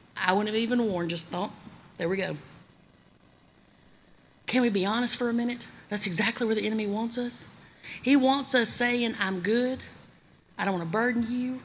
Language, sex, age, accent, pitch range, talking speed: English, female, 30-49, American, 195-255 Hz, 185 wpm